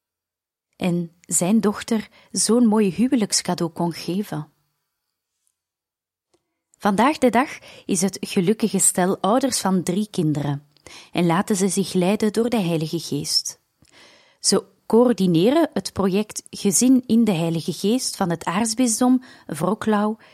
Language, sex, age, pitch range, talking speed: Dutch, female, 30-49, 170-220 Hz, 120 wpm